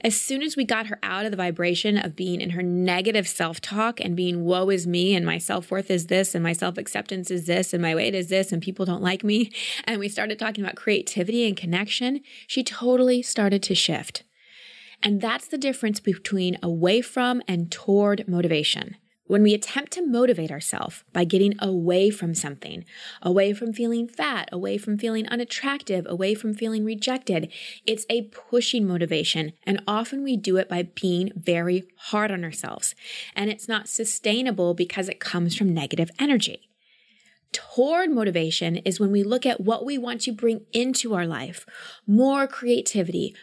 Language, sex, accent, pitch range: English, female, American, 185-245 Hz